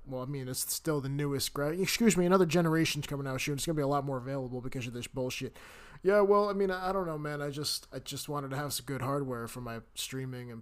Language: English